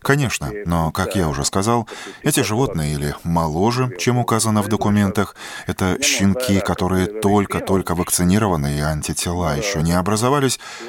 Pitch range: 85-115 Hz